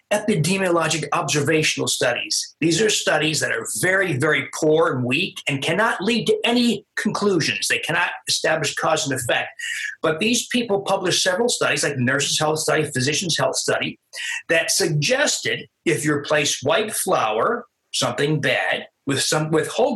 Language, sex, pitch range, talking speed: English, male, 150-215 Hz, 155 wpm